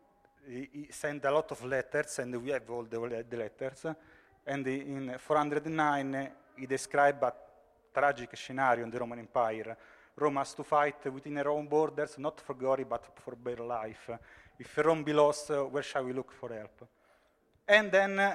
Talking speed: 165 wpm